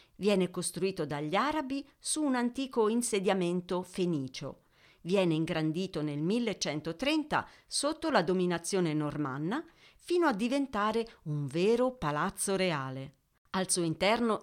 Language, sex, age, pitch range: Italian, female, 40-59, 165-225 Hz